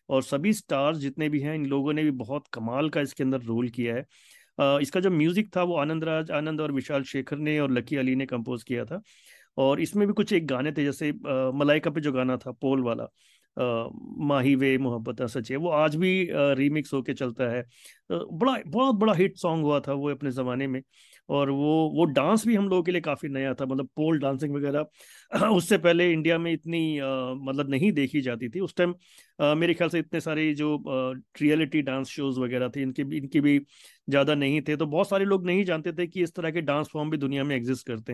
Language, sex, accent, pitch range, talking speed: Hindi, male, native, 135-165 Hz, 215 wpm